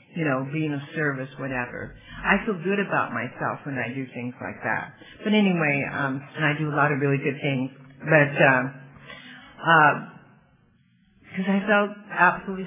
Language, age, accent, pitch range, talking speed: English, 50-69, American, 140-185 Hz, 175 wpm